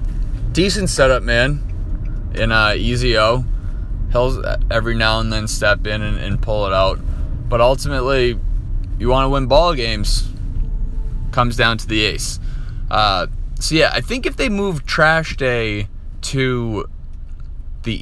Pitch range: 85-120 Hz